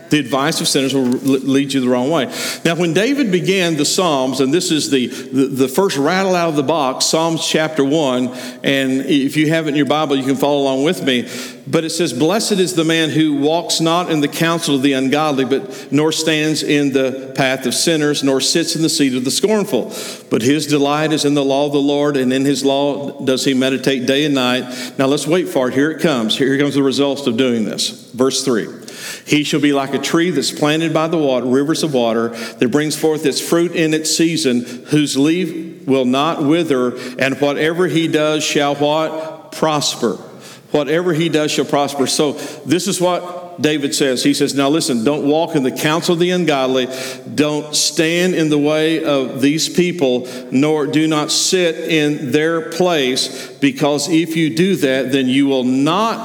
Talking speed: 205 wpm